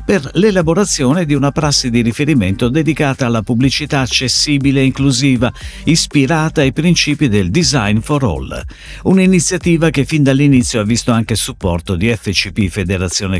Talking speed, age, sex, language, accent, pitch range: 140 wpm, 50-69, male, Italian, native, 95-155 Hz